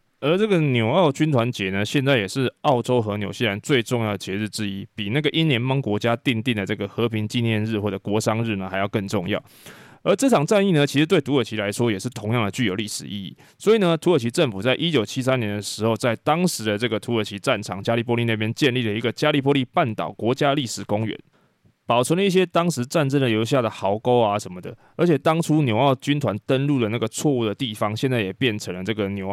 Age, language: 20-39, Chinese